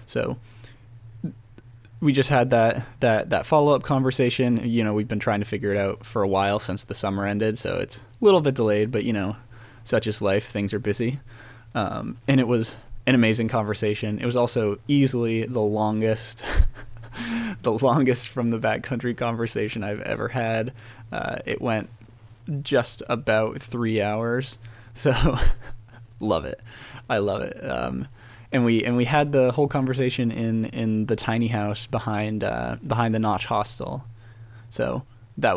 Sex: male